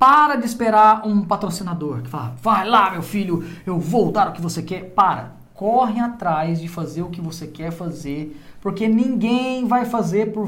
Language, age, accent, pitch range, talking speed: Portuguese, 20-39, Brazilian, 160-225 Hz, 190 wpm